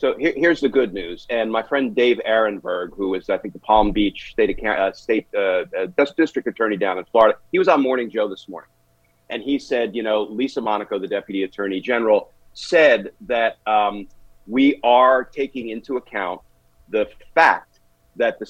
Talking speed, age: 180 wpm, 40-59